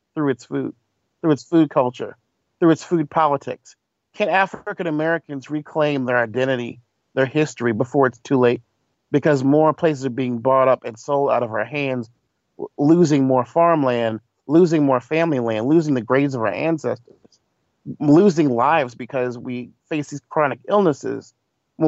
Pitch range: 130-180 Hz